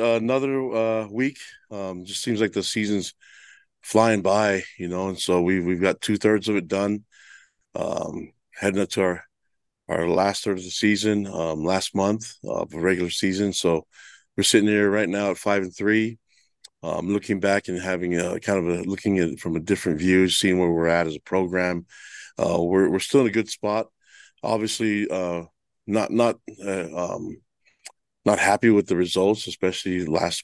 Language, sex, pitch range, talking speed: English, male, 85-105 Hz, 190 wpm